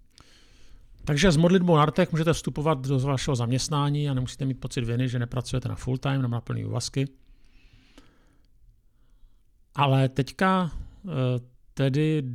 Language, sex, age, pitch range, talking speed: Czech, male, 50-69, 120-145 Hz, 120 wpm